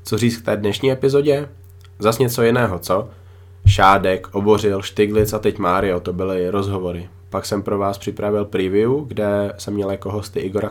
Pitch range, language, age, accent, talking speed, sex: 95-105 Hz, Czech, 20-39, native, 175 wpm, male